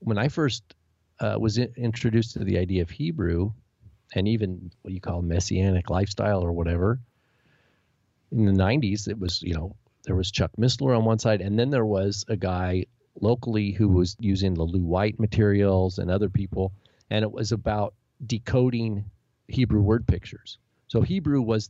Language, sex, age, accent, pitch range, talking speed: English, male, 40-59, American, 100-125 Hz, 170 wpm